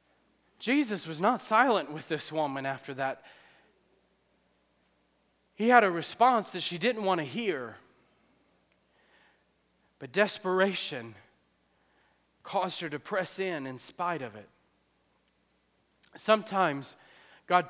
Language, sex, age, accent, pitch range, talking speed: English, male, 30-49, American, 160-205 Hz, 110 wpm